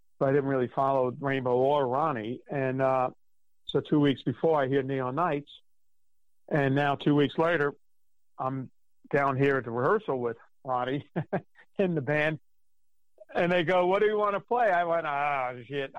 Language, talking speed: English, 180 wpm